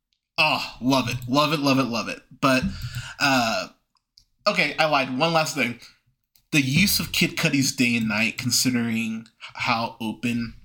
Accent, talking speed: American, 160 wpm